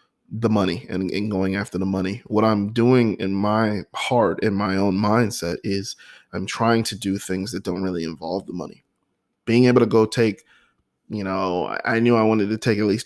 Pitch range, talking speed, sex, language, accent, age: 95-115 Hz, 205 wpm, male, English, American, 20-39